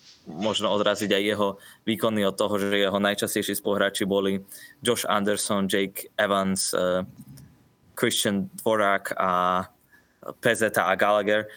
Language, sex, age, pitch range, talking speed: Slovak, male, 20-39, 100-115 Hz, 120 wpm